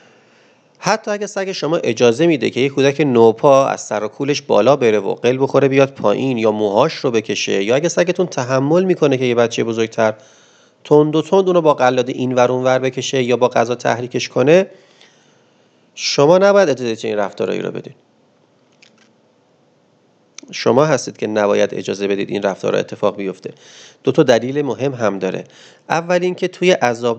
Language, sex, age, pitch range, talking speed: Persian, male, 30-49, 115-165 Hz, 170 wpm